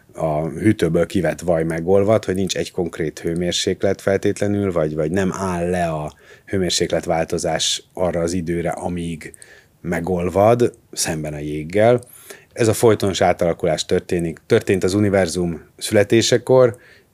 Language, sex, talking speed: Hungarian, male, 125 wpm